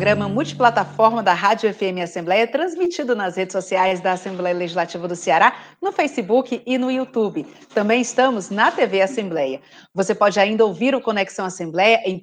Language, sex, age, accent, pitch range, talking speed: Portuguese, female, 40-59, Brazilian, 190-245 Hz, 165 wpm